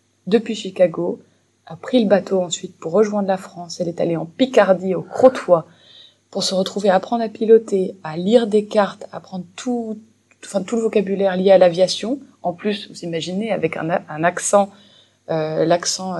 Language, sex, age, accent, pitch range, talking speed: French, female, 20-39, French, 165-200 Hz, 185 wpm